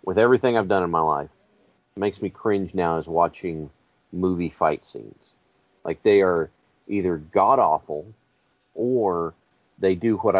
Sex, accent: male, American